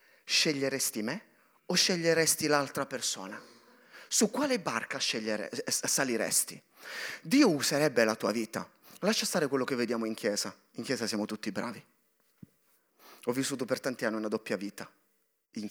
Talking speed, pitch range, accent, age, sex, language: 140 wpm, 140-225 Hz, native, 30-49, male, Italian